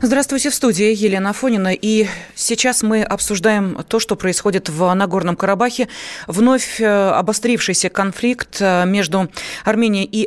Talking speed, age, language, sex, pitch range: 125 wpm, 30-49, Russian, female, 180-225 Hz